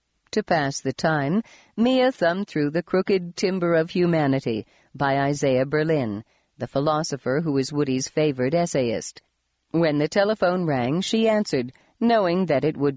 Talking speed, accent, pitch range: 150 wpm, American, 135-185 Hz